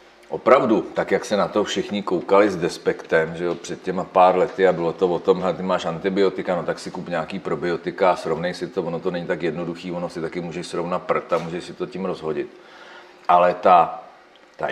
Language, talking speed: Czech, 225 wpm